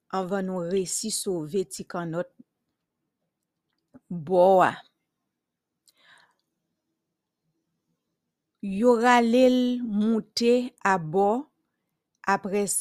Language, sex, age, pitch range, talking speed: English, female, 50-69, 180-220 Hz, 60 wpm